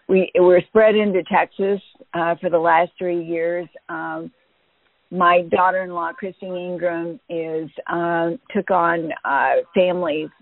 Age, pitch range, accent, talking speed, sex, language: 50-69, 165-190 Hz, American, 125 wpm, female, English